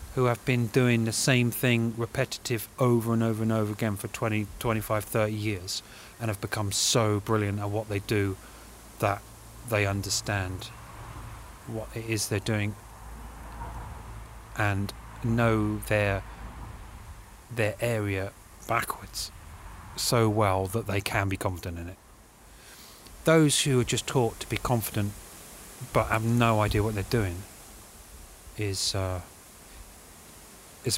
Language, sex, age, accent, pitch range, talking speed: Russian, male, 30-49, British, 100-115 Hz, 135 wpm